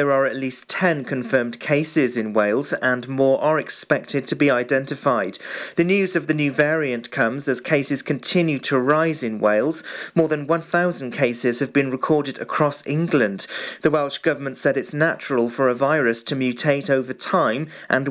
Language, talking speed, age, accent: English, 175 wpm, 40-59, British